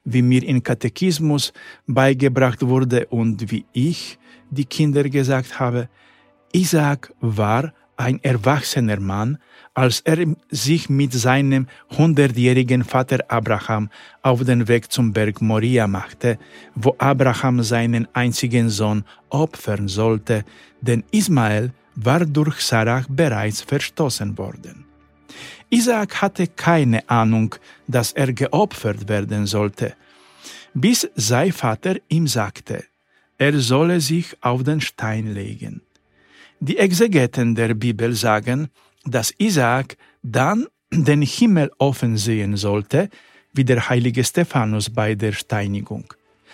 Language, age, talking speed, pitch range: Polish, 50-69, 115 wpm, 110-145 Hz